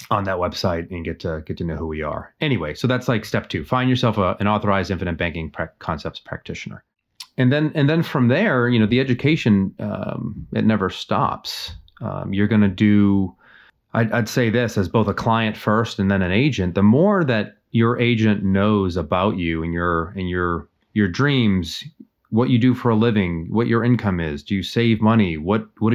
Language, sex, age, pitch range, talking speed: English, male, 30-49, 90-115 Hz, 200 wpm